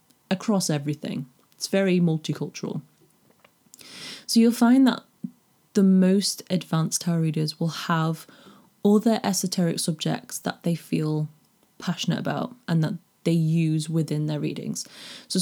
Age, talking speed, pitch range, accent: 20-39, 125 wpm, 160-200 Hz, British